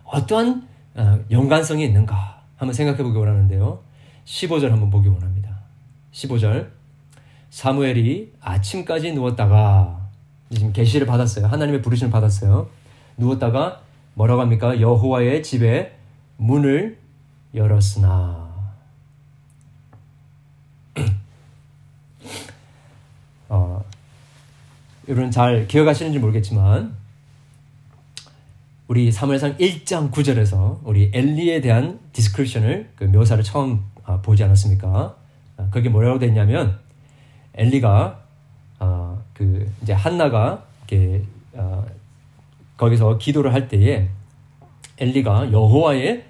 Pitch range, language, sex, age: 110-140 Hz, Korean, male, 40-59